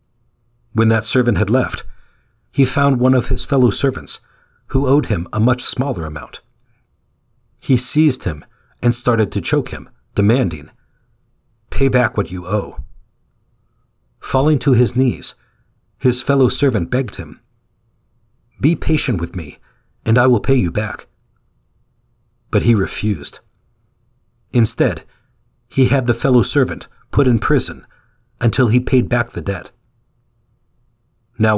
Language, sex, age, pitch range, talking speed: English, male, 50-69, 105-125 Hz, 135 wpm